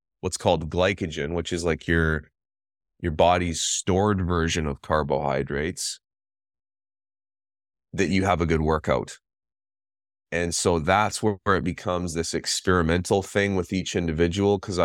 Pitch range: 80-95 Hz